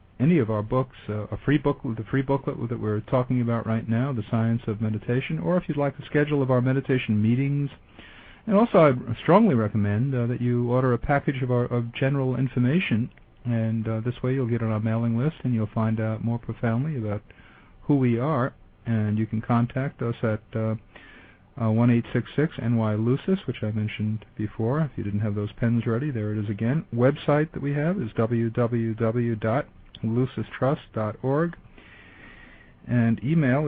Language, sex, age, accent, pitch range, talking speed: English, male, 50-69, American, 110-135 Hz, 175 wpm